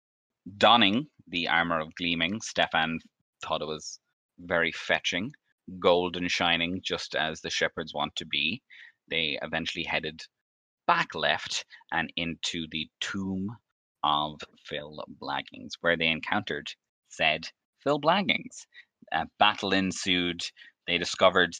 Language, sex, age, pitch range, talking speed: English, male, 20-39, 80-90 Hz, 120 wpm